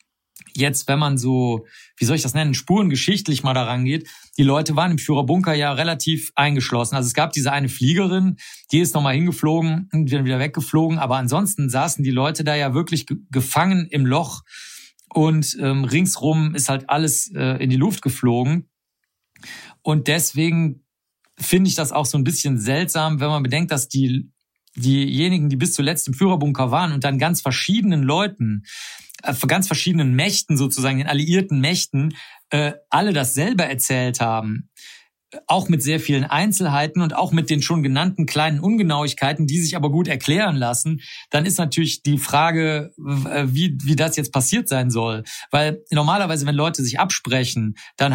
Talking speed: 165 wpm